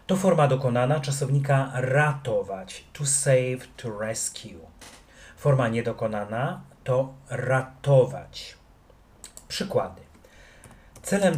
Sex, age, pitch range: male, 30-49, 115-140 Hz